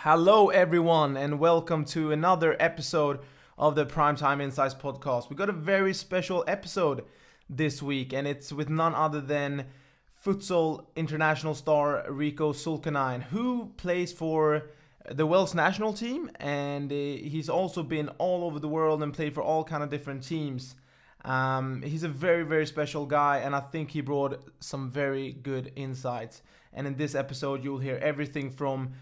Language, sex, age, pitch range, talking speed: English, male, 20-39, 135-155 Hz, 160 wpm